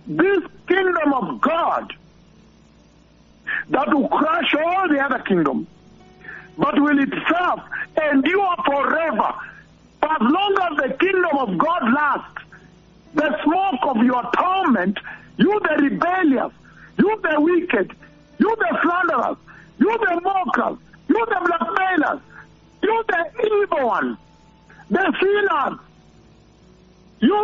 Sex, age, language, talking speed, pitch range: male, 60-79, English, 110 wpm, 285-365 Hz